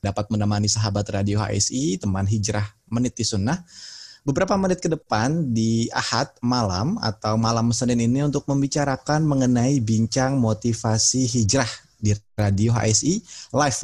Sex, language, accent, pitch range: male, Indonesian, native, 110-140 Hz